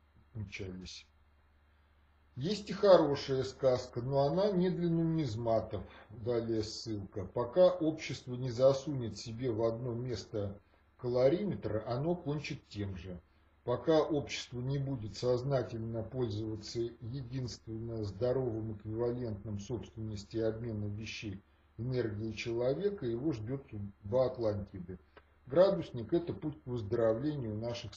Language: Russian